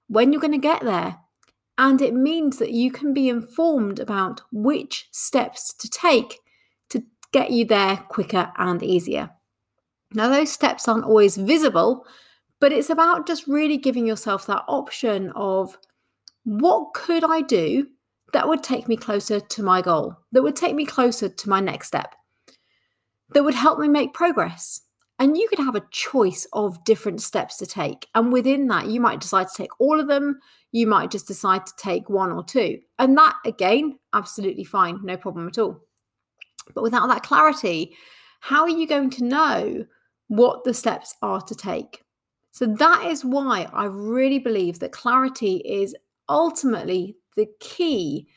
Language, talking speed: English, 170 wpm